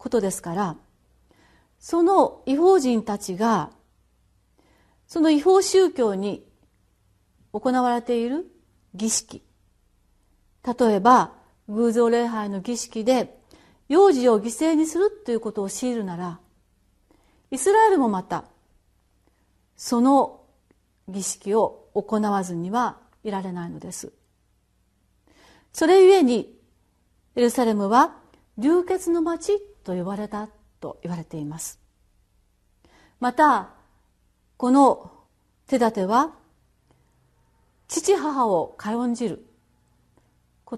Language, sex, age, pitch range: Japanese, female, 40-59, 200-300 Hz